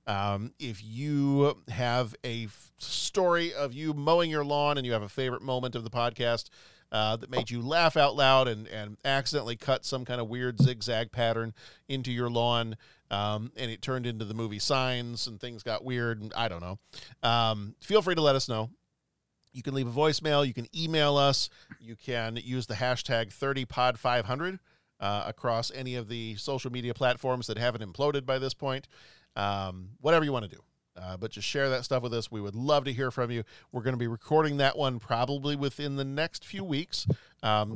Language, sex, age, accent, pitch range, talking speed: English, male, 40-59, American, 110-140 Hz, 205 wpm